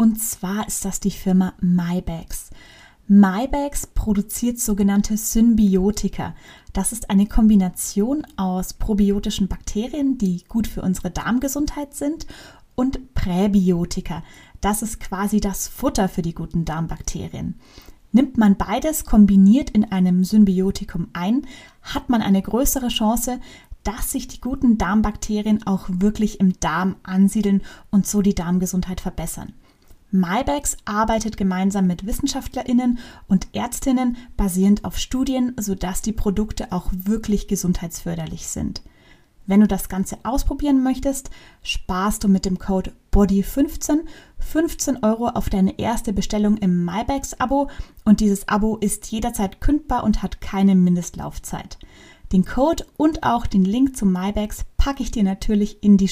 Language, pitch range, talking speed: German, 190-240 Hz, 135 wpm